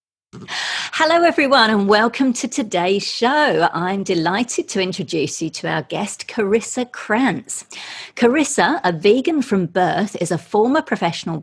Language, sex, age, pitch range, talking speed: English, female, 40-59, 165-235 Hz, 135 wpm